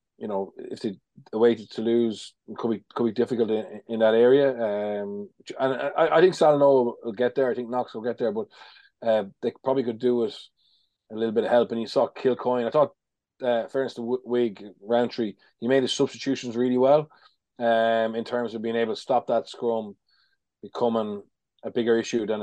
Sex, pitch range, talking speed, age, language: male, 110-130 Hz, 210 wpm, 20-39, English